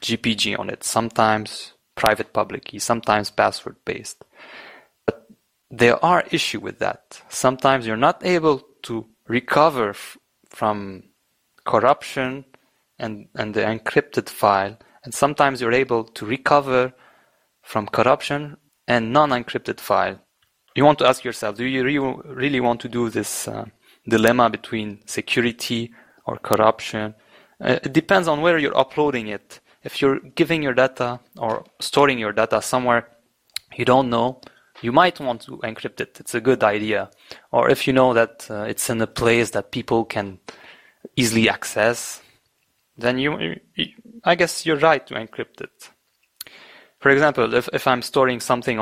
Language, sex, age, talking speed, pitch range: English, male, 20-39, 145 wpm, 110-135 Hz